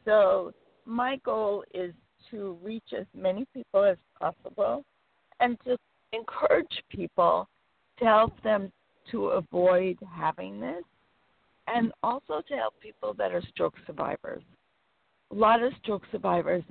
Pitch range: 180-225 Hz